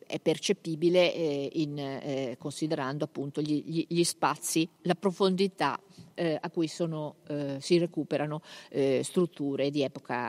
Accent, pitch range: native, 150-185 Hz